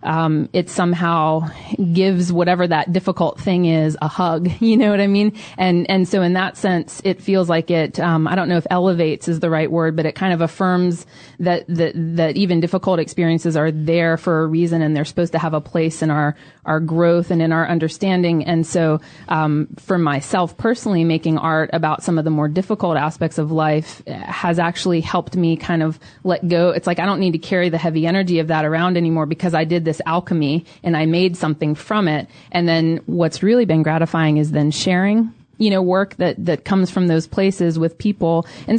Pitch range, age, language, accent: 160-180 Hz, 30-49, English, American